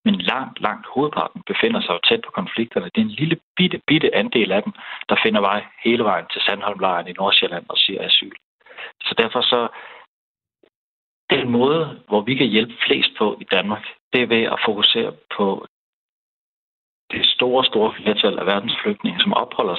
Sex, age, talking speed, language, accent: male, 60-79, 175 wpm, Danish, native